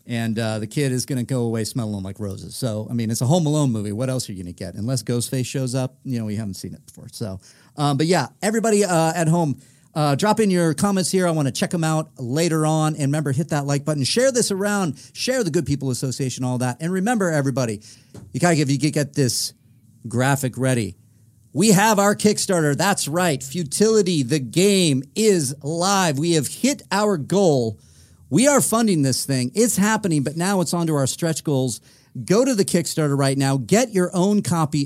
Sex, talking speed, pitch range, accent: male, 215 wpm, 125-175 Hz, American